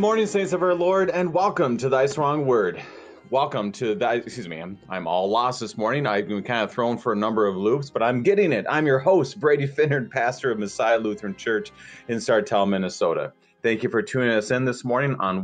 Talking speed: 225 wpm